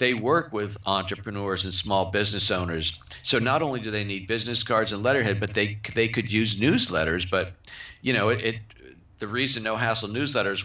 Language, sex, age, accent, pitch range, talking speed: English, male, 50-69, American, 100-115 Hz, 190 wpm